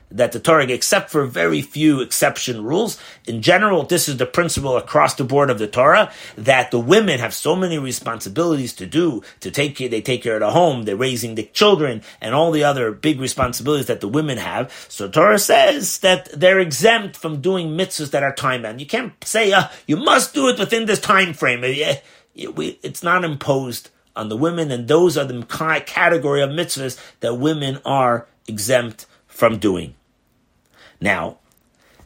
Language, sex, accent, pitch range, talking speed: English, male, American, 115-165 Hz, 185 wpm